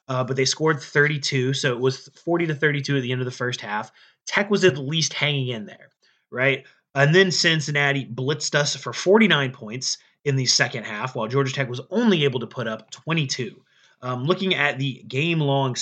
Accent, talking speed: American, 195 wpm